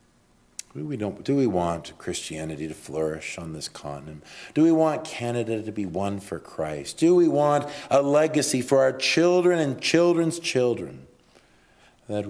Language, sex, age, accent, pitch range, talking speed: English, male, 40-59, American, 80-105 Hz, 155 wpm